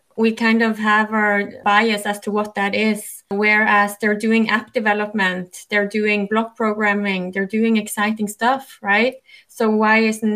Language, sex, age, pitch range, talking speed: German, female, 20-39, 200-235 Hz, 170 wpm